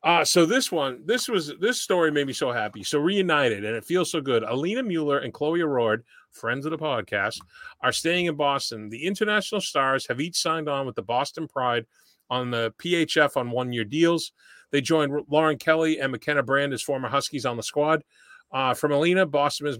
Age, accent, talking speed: 40-59, American, 205 wpm